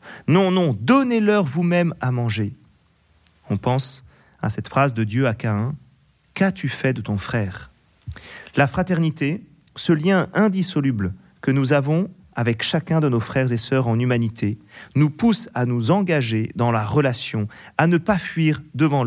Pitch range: 115-170 Hz